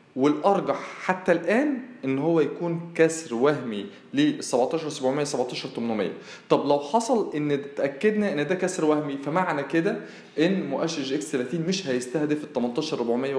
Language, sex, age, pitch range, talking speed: Arabic, male, 20-39, 145-185 Hz, 135 wpm